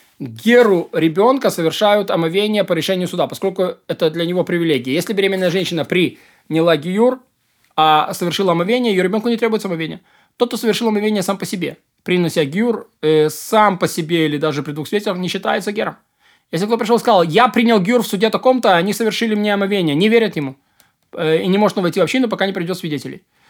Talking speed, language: 200 wpm, Russian